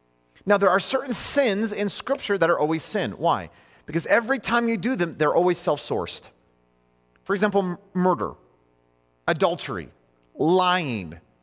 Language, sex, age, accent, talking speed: English, male, 30-49, American, 135 wpm